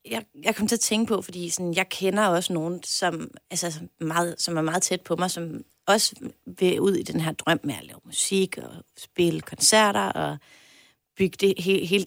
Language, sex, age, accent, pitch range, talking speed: Danish, female, 30-49, native, 170-205 Hz, 185 wpm